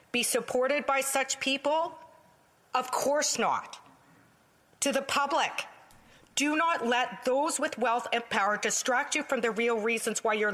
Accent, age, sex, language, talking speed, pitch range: American, 40-59, female, English, 155 wpm, 210-255 Hz